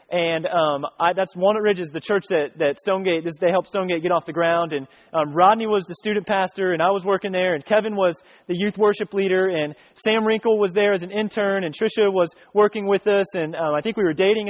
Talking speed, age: 250 wpm, 30-49